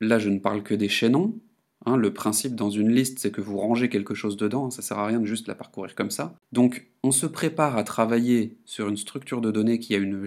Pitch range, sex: 105-130 Hz, male